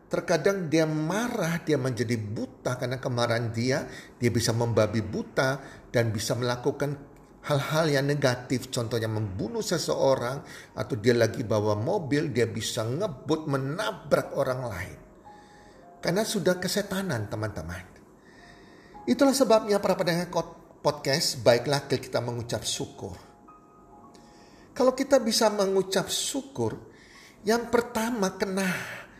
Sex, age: male, 40-59